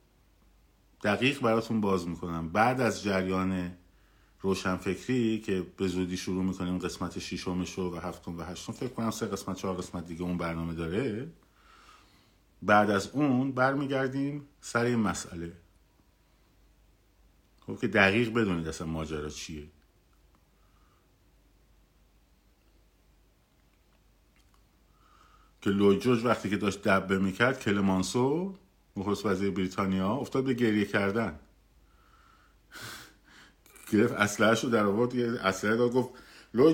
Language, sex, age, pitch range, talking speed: Persian, male, 50-69, 90-115 Hz, 110 wpm